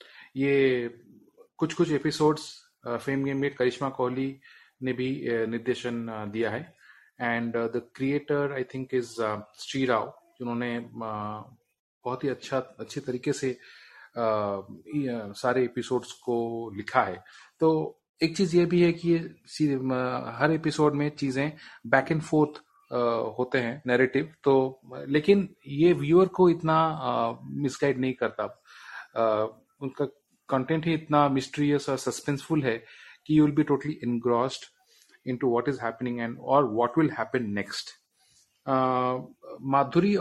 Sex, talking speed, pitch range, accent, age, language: male, 125 wpm, 115-140 Hz, native, 30-49, Hindi